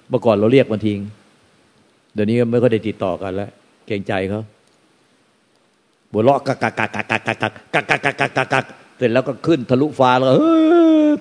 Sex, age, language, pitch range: male, 60-79, Thai, 110-150 Hz